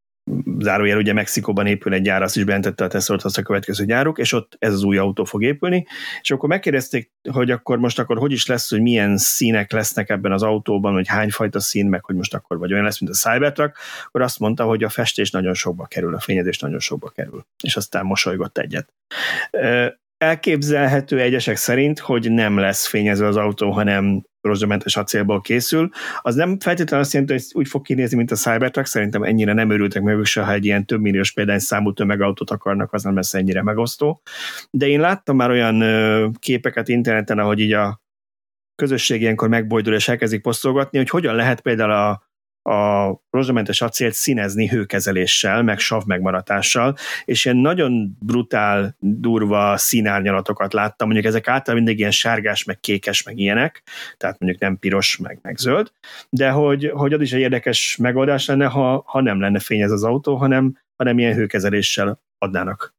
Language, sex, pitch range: Hungarian, male, 100-125 Hz